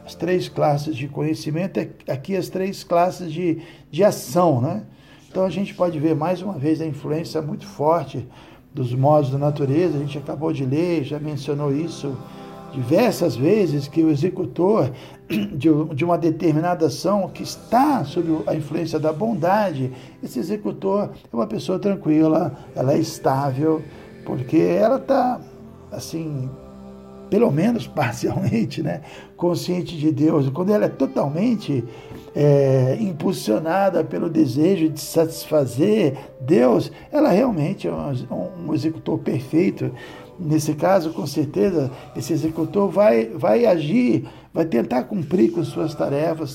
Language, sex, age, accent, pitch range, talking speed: Portuguese, male, 60-79, Brazilian, 145-180 Hz, 135 wpm